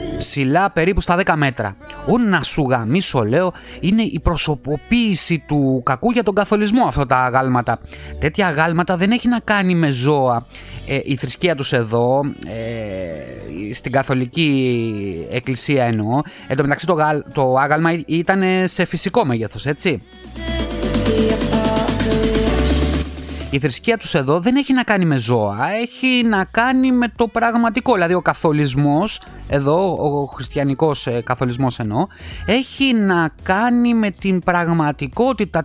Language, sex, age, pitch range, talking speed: Greek, male, 30-49, 125-185 Hz, 130 wpm